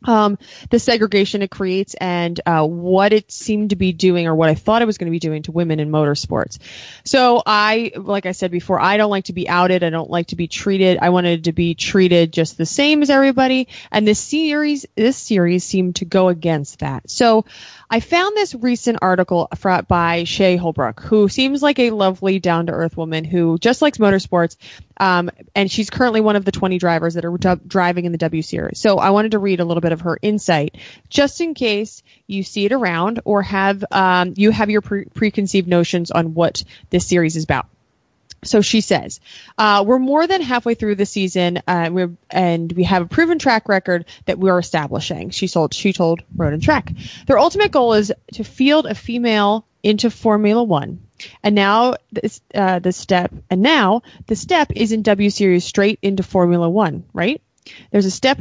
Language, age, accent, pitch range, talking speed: English, 20-39, American, 175-220 Hz, 205 wpm